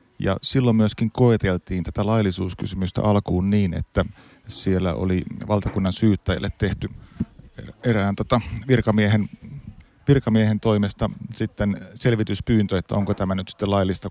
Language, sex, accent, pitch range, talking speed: Finnish, male, native, 95-110 Hz, 100 wpm